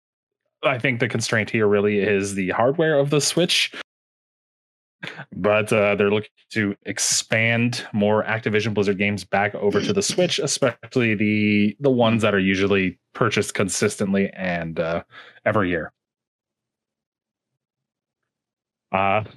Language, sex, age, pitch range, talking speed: English, male, 20-39, 100-120 Hz, 125 wpm